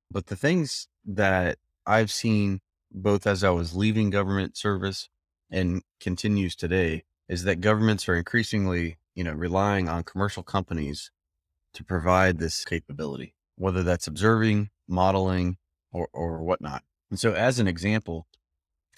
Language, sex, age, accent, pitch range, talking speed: English, male, 30-49, American, 85-100 Hz, 140 wpm